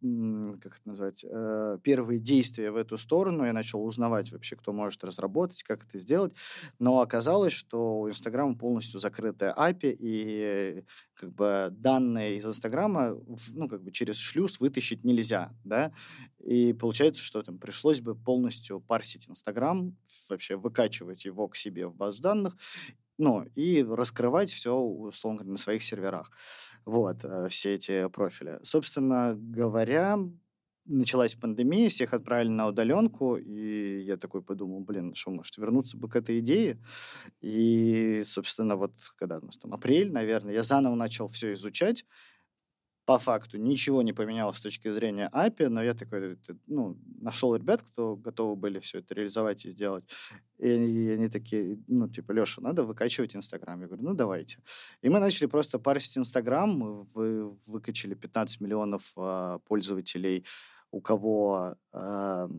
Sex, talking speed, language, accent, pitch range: male, 150 wpm, Russian, native, 100-125 Hz